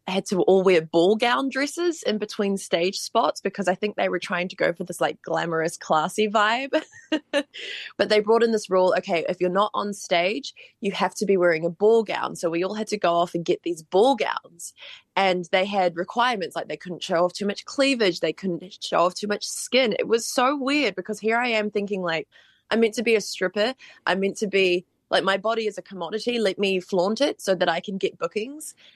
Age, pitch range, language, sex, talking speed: 20-39, 175-225 Hz, English, female, 235 wpm